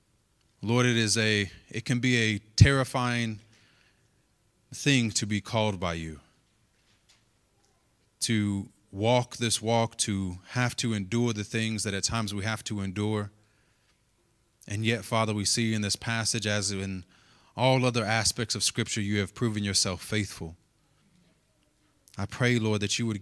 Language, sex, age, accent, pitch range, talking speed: English, male, 20-39, American, 100-115 Hz, 150 wpm